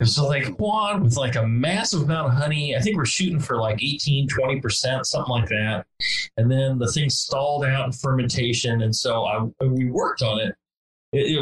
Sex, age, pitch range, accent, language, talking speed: male, 30-49, 105-140 Hz, American, English, 200 wpm